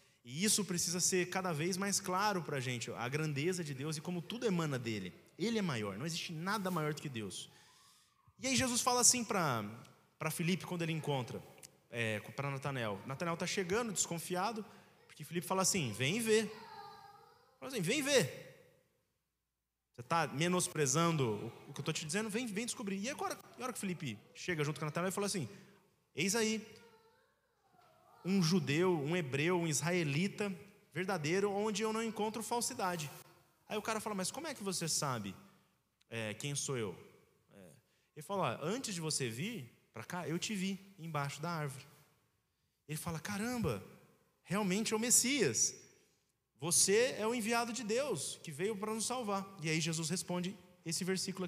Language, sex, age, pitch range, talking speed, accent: Portuguese, male, 20-39, 145-205 Hz, 175 wpm, Brazilian